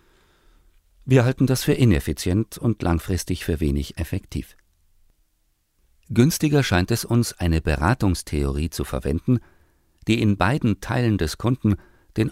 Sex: male